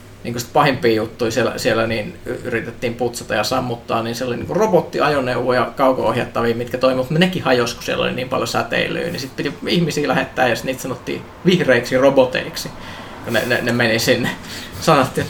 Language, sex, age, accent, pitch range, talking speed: Finnish, male, 20-39, native, 115-140 Hz, 170 wpm